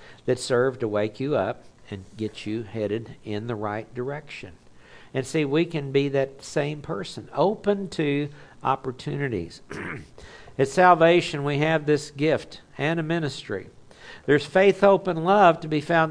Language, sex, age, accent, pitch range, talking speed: English, male, 60-79, American, 120-155 Hz, 155 wpm